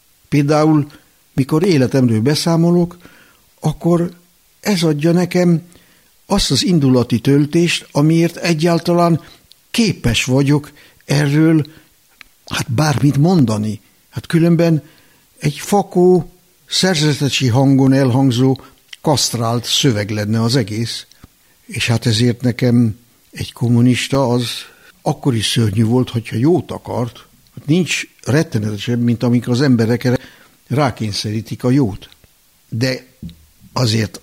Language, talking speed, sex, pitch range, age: Hungarian, 100 wpm, male, 115-150 Hz, 60-79